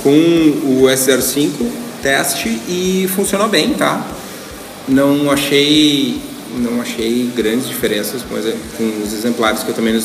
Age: 20-39